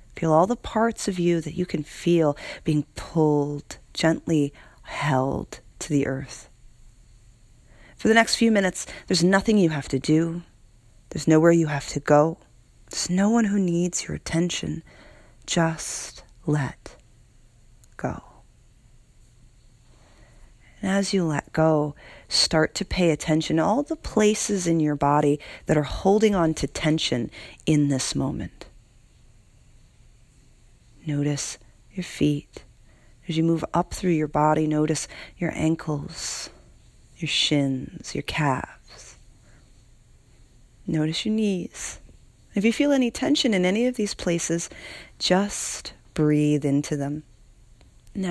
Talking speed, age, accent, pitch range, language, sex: 130 wpm, 40-59, American, 125-180 Hz, English, female